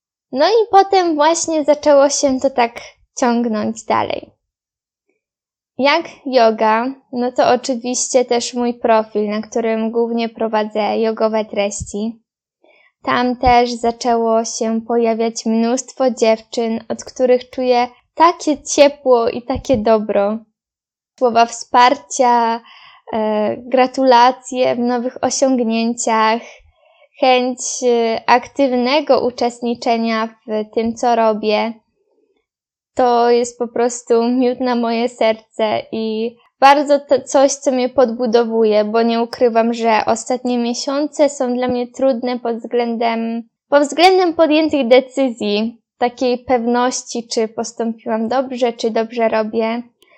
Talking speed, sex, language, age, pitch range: 110 wpm, female, Polish, 20-39, 225-260 Hz